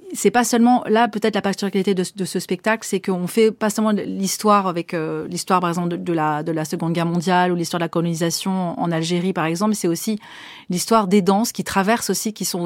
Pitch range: 175-215 Hz